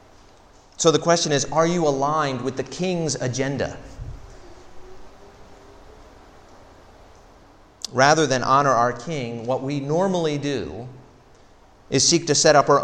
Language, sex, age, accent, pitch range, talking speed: English, male, 40-59, American, 115-160 Hz, 120 wpm